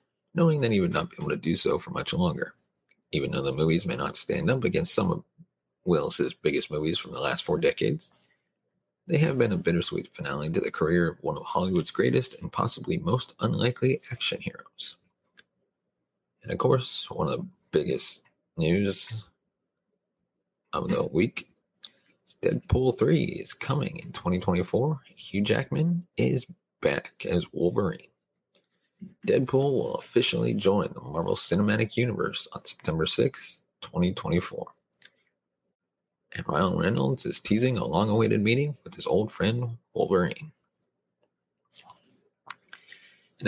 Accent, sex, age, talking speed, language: American, male, 40-59, 140 wpm, English